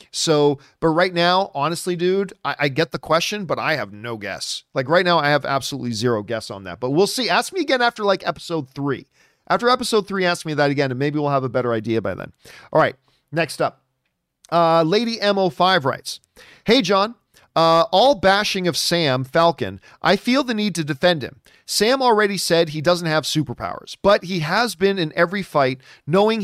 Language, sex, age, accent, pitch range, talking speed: English, male, 40-59, American, 145-195 Hz, 205 wpm